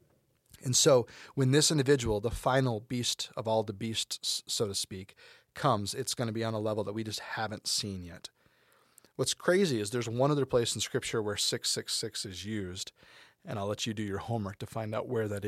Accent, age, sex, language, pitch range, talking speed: American, 30-49, male, English, 105-125 Hz, 210 wpm